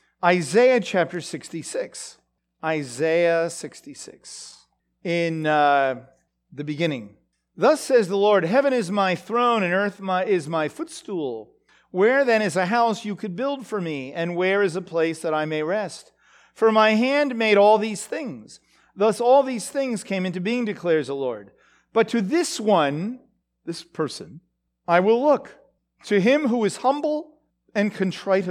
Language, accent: English, American